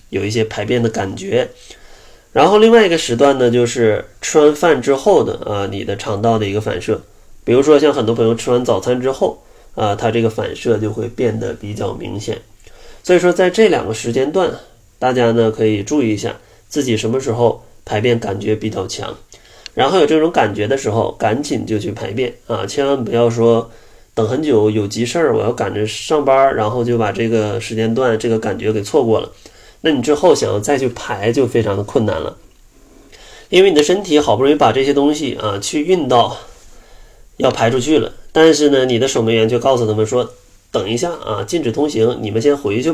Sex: male